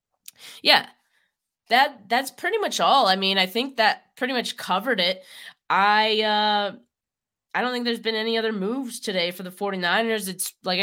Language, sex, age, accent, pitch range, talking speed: English, female, 20-39, American, 165-210 Hz, 170 wpm